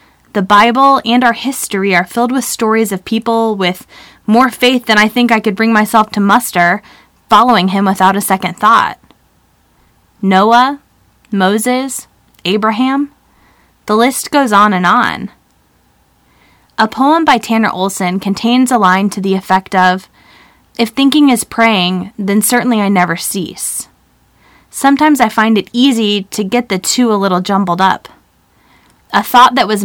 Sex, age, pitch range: female, 20-39, 195-240 Hz